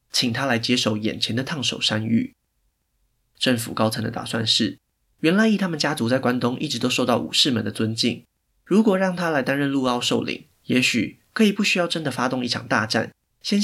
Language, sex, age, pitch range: Chinese, male, 20-39, 115-145 Hz